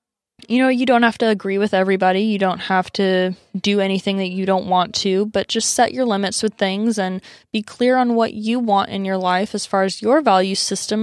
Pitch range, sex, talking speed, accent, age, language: 185-215 Hz, female, 235 wpm, American, 20-39, English